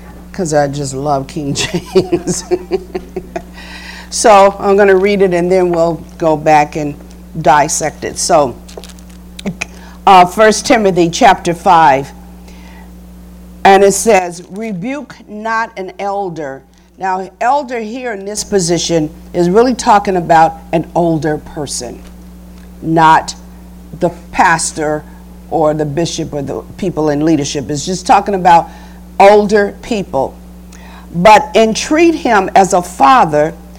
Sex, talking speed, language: female, 125 wpm, English